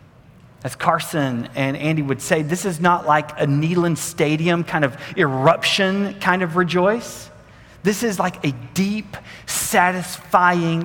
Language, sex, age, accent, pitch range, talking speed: English, male, 30-49, American, 165-230 Hz, 140 wpm